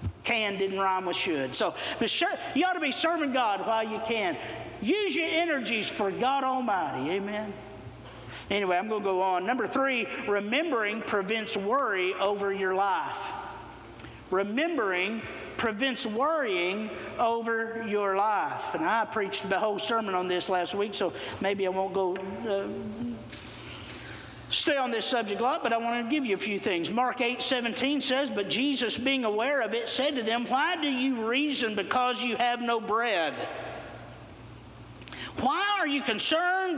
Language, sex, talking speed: English, male, 165 wpm